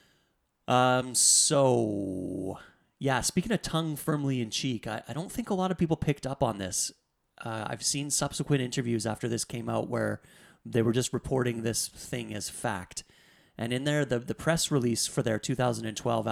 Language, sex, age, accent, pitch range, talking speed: English, male, 30-49, American, 110-140 Hz, 180 wpm